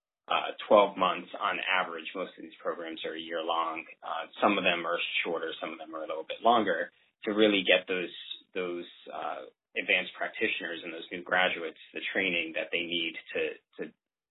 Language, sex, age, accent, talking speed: English, male, 30-49, American, 195 wpm